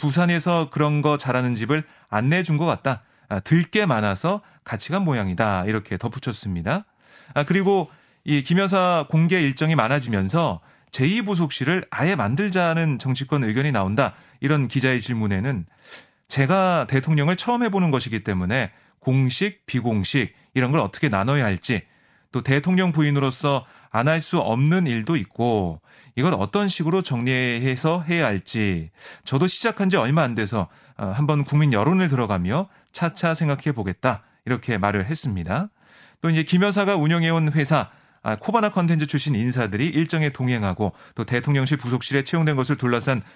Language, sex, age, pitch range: Korean, male, 30-49, 120-170 Hz